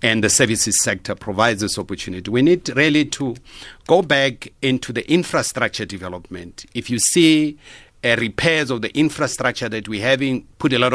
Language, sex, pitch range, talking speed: English, male, 105-140 Hz, 165 wpm